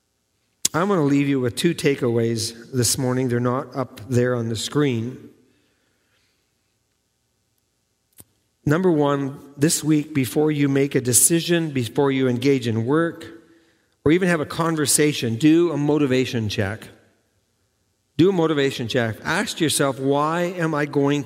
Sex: male